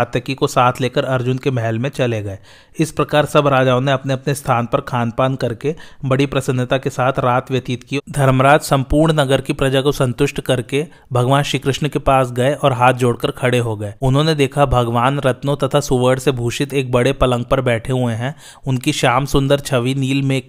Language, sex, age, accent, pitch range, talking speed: Hindi, male, 30-49, native, 125-140 Hz, 75 wpm